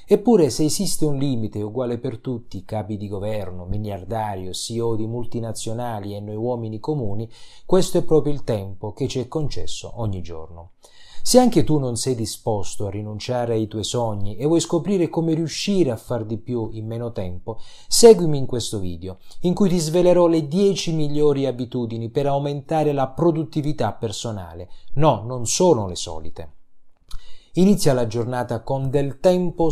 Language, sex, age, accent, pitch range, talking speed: Italian, male, 30-49, native, 105-150 Hz, 165 wpm